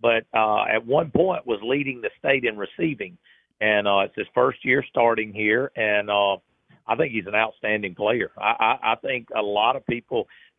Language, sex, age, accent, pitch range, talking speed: English, male, 50-69, American, 110-125 Hz, 200 wpm